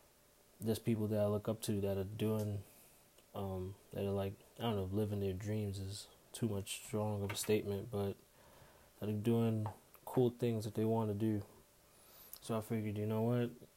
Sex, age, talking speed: male, 20-39, 190 wpm